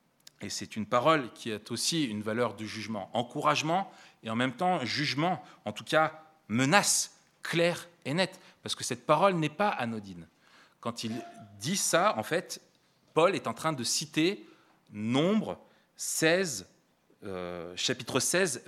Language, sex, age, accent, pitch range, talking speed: French, male, 30-49, French, 120-170 Hz, 155 wpm